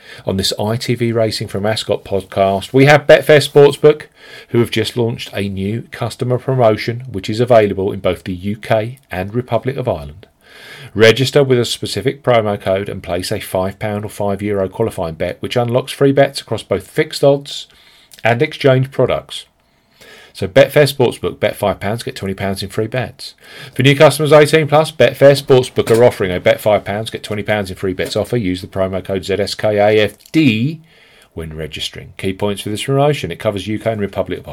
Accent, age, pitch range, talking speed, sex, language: British, 40-59, 100-135 Hz, 175 wpm, male, English